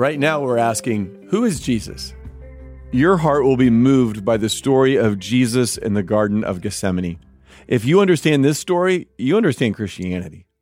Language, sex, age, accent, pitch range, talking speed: English, male, 40-59, American, 100-135 Hz, 170 wpm